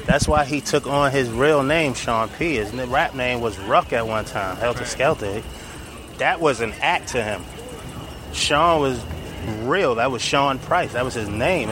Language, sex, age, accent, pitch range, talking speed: English, male, 20-39, American, 120-150 Hz, 190 wpm